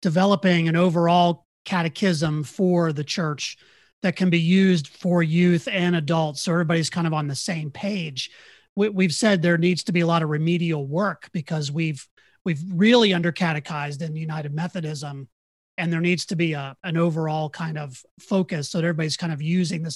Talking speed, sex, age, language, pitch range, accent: 185 wpm, male, 30-49, English, 160-195 Hz, American